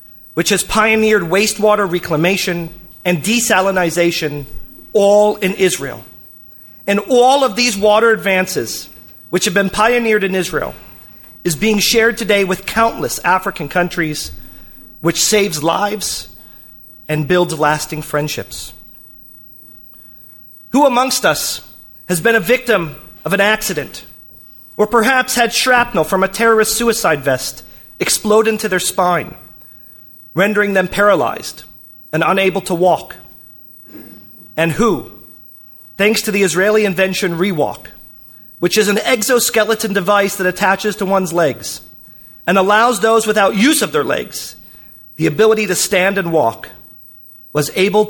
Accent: American